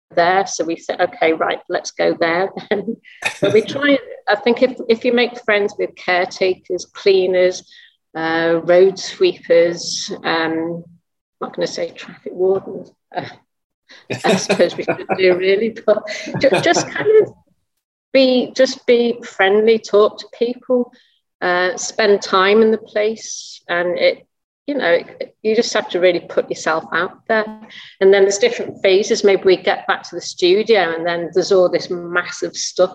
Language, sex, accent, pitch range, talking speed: English, female, British, 175-225 Hz, 165 wpm